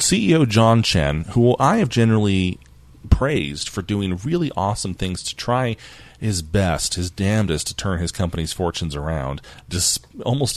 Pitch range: 85-115 Hz